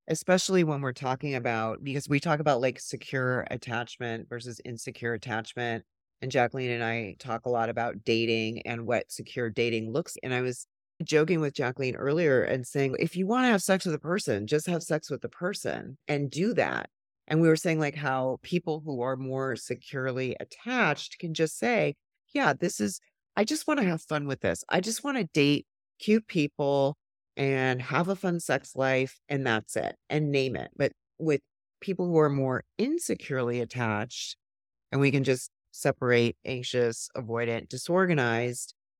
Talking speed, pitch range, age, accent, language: 180 wpm, 120-155 Hz, 30-49, American, English